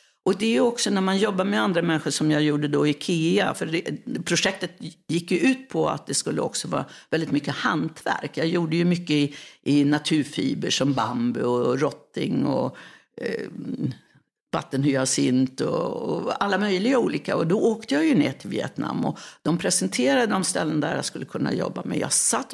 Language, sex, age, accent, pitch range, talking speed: English, female, 60-79, Swedish, 165-235 Hz, 190 wpm